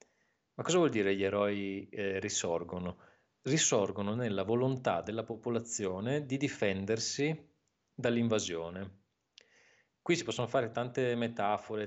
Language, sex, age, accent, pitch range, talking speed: Italian, male, 30-49, native, 100-130 Hz, 110 wpm